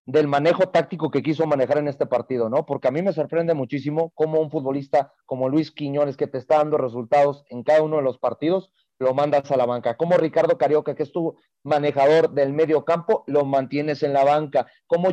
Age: 40-59